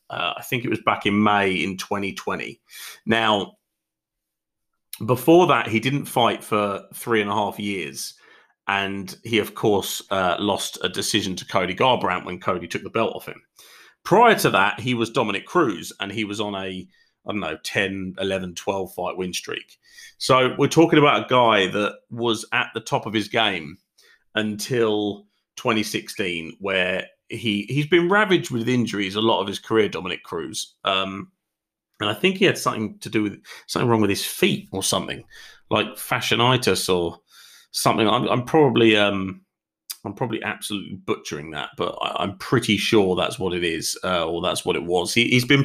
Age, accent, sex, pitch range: 30-49, British, male, 100-120 Hz